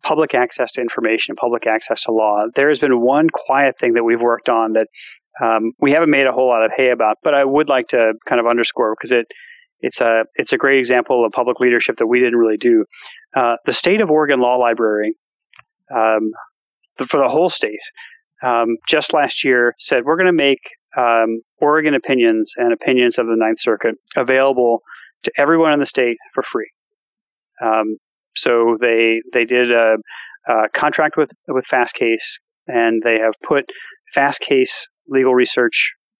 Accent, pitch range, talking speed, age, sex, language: American, 115-155 Hz, 185 wpm, 30-49, male, English